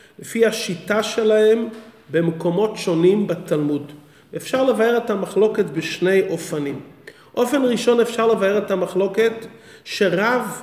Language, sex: English, male